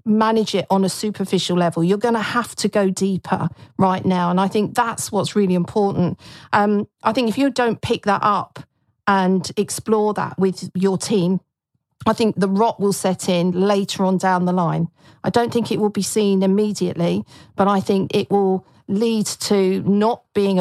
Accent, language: British, English